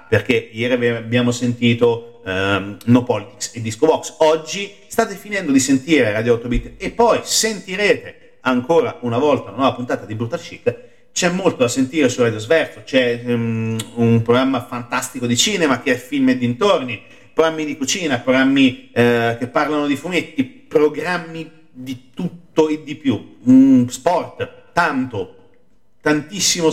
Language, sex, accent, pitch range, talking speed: Italian, male, native, 120-190 Hz, 155 wpm